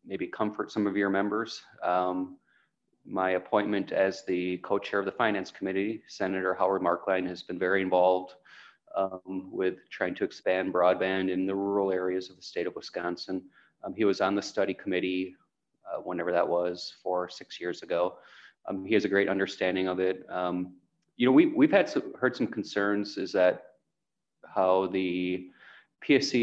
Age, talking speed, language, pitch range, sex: 30-49, 175 wpm, English, 90-105 Hz, male